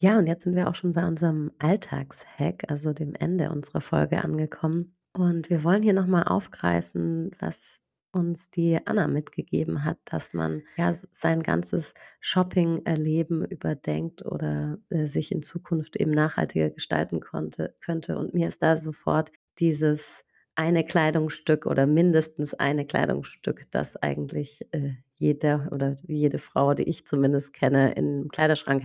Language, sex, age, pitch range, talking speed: German, female, 30-49, 145-170 Hz, 140 wpm